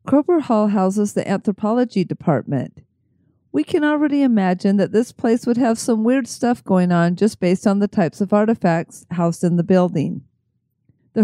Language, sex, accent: English, female, American